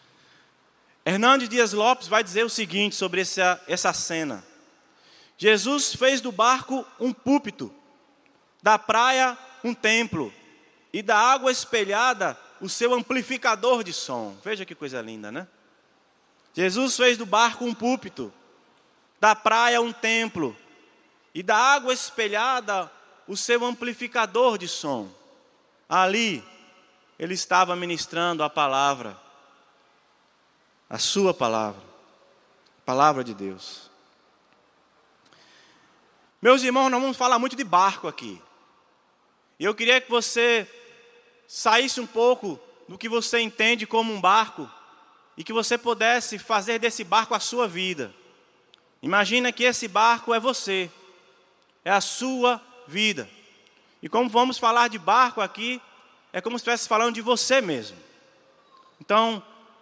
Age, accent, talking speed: 20-39, Brazilian, 125 wpm